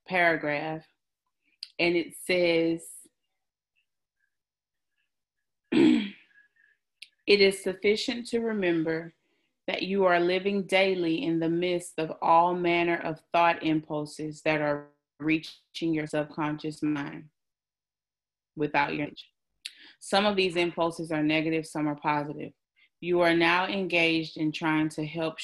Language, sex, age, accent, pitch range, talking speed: English, female, 30-49, American, 155-175 Hz, 115 wpm